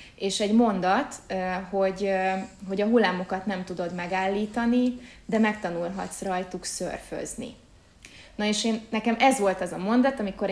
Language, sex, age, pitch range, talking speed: Hungarian, female, 20-39, 180-220 Hz, 135 wpm